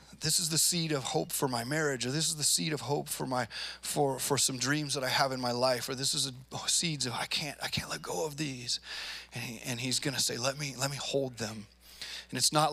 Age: 30-49